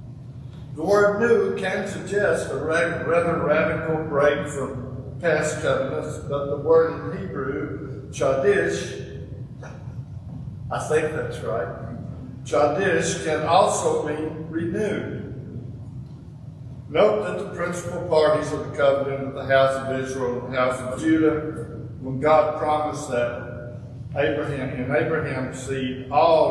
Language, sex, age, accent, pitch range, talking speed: English, male, 60-79, American, 130-155 Hz, 120 wpm